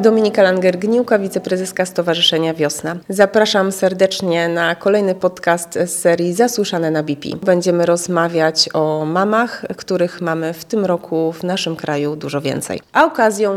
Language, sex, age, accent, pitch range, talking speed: Polish, female, 20-39, native, 175-210 Hz, 140 wpm